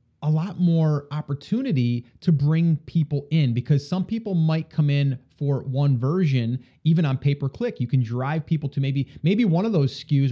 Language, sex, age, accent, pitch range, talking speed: English, male, 30-49, American, 130-160 Hz, 180 wpm